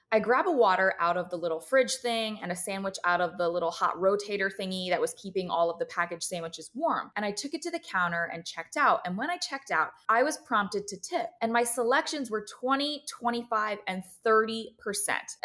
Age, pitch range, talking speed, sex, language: 20-39, 185-245 Hz, 220 wpm, female, English